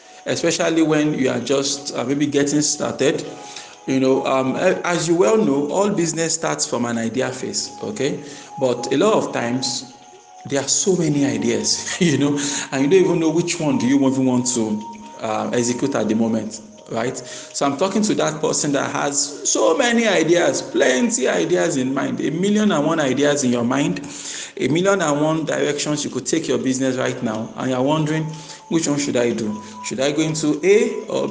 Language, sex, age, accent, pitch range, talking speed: English, male, 50-69, Nigerian, 130-165 Hz, 195 wpm